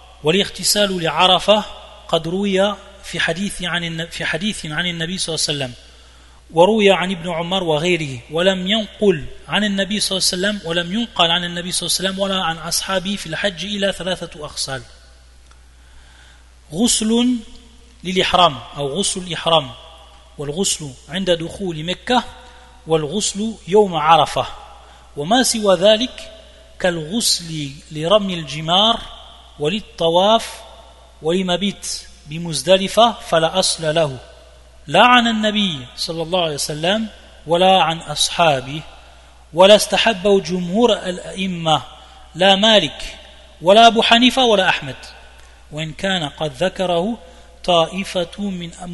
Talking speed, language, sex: 115 wpm, French, male